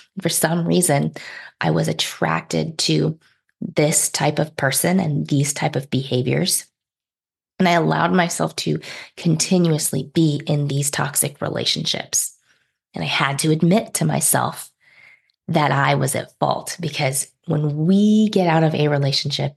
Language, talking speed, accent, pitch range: English, 145 wpm, American, 140-165 Hz